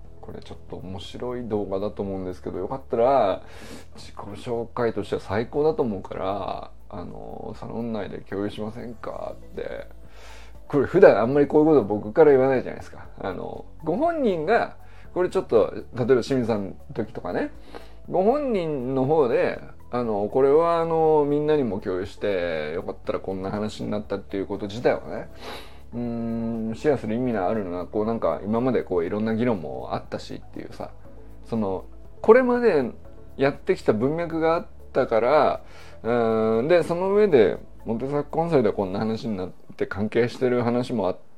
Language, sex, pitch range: Japanese, male, 100-135 Hz